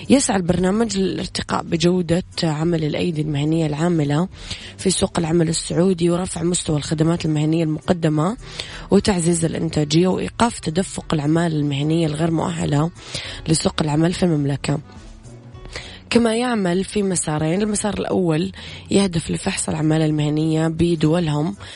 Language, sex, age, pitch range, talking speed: Arabic, female, 20-39, 155-180 Hz, 110 wpm